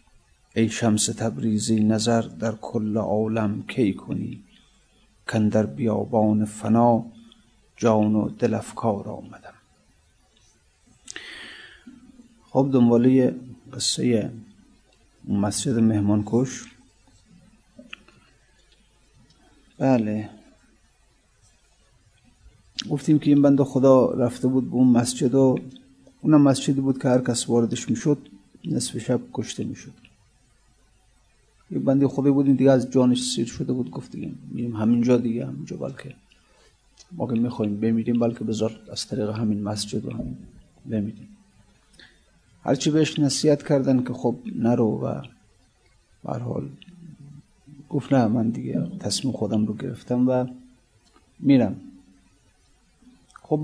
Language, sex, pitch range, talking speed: Persian, male, 110-140 Hz, 105 wpm